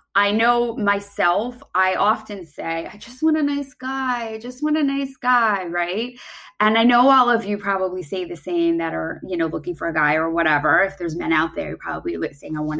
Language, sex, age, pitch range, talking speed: English, female, 20-39, 180-255 Hz, 230 wpm